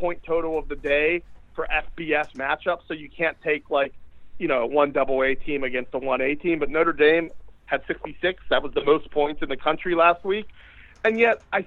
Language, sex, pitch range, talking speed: English, male, 140-185 Hz, 210 wpm